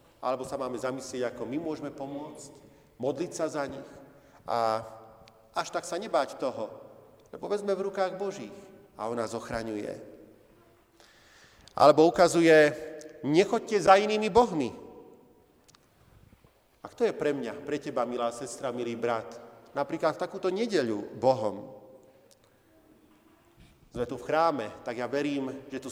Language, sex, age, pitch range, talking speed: Slovak, male, 40-59, 130-165 Hz, 135 wpm